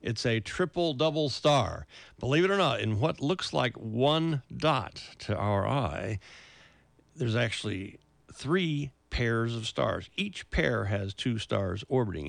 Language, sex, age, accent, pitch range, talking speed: English, male, 50-69, American, 105-135 Hz, 140 wpm